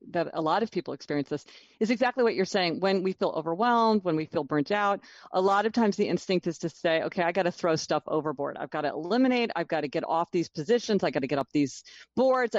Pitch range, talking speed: 165-215 Hz, 260 wpm